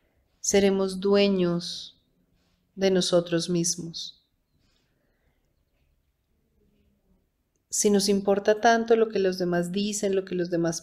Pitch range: 170-215 Hz